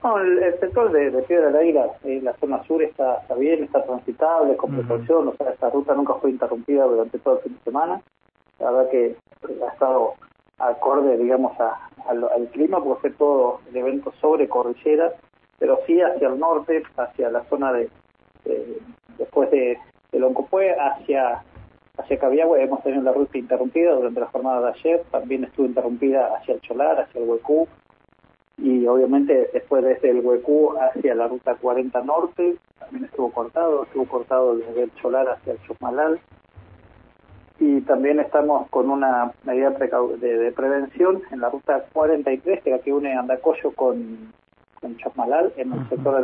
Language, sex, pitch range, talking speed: Spanish, male, 125-165 Hz, 175 wpm